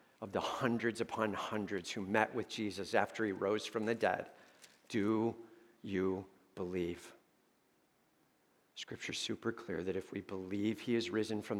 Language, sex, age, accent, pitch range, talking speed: English, male, 50-69, American, 105-165 Hz, 150 wpm